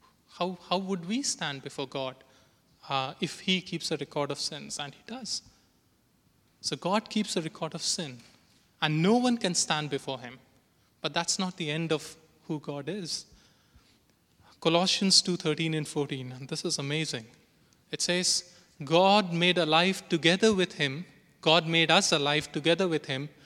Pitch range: 140-180 Hz